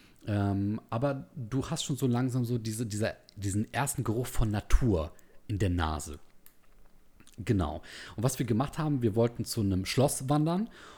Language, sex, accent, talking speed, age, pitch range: German, male, German, 155 wpm, 40-59, 105-130 Hz